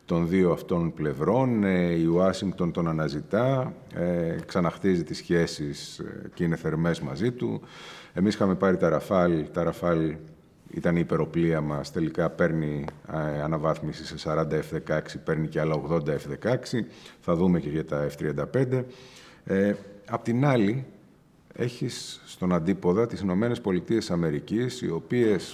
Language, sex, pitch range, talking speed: Greek, male, 75-100 Hz, 140 wpm